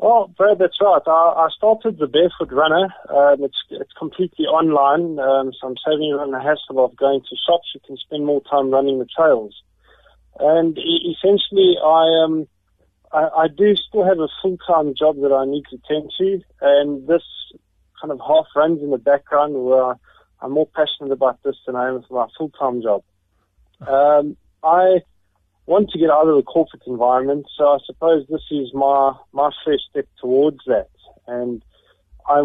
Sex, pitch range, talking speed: male, 135-165 Hz, 185 wpm